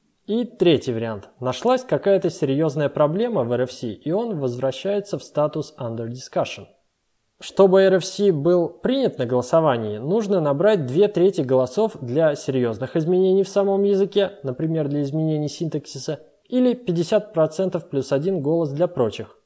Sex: male